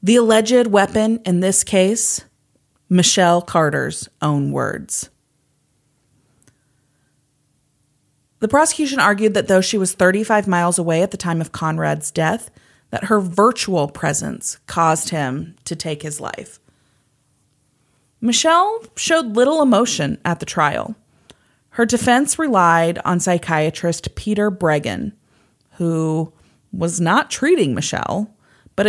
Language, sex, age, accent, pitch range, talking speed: English, female, 30-49, American, 155-225 Hz, 115 wpm